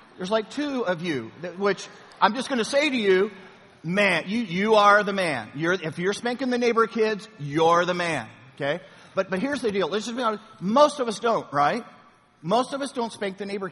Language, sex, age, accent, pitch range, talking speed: English, male, 50-69, American, 170-220 Hz, 230 wpm